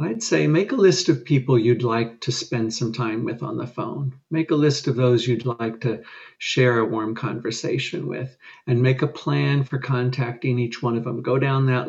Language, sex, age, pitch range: English, male, 50-69, 120-140 Hz